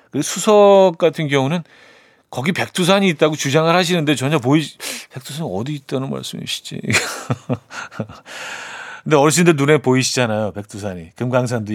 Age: 40-59